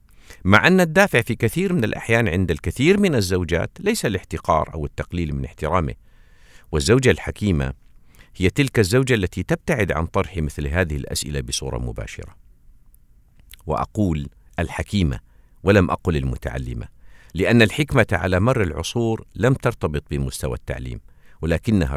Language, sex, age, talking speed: Arabic, male, 50-69, 125 wpm